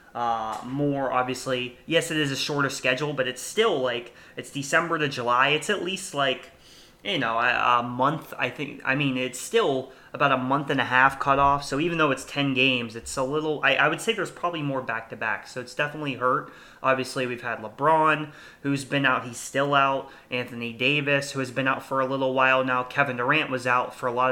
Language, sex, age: English, male, 20-39